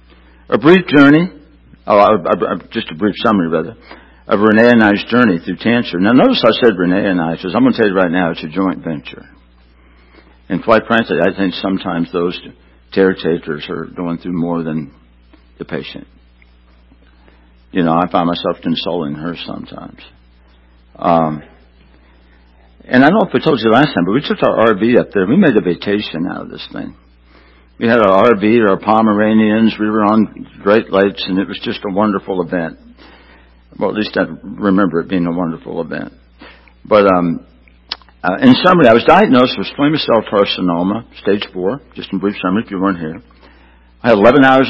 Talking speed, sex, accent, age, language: 190 wpm, male, American, 60-79, English